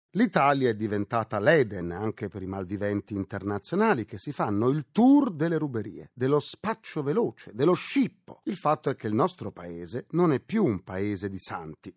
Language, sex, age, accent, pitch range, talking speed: Italian, male, 40-59, native, 105-175 Hz, 175 wpm